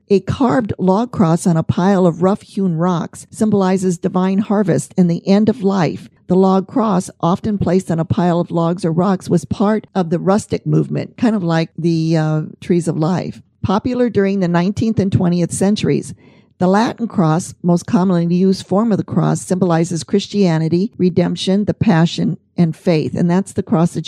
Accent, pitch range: American, 170-195 Hz